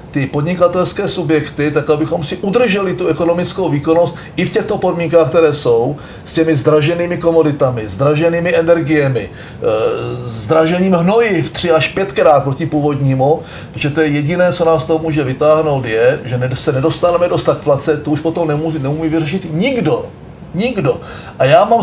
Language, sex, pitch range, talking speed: Czech, male, 145-175 Hz, 155 wpm